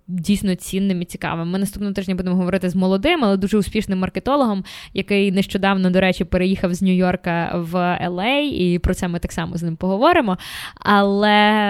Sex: female